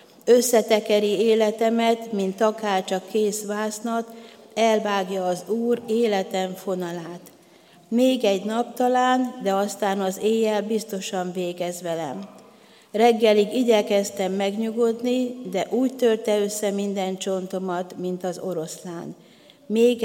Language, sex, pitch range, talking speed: Hungarian, female, 190-230 Hz, 110 wpm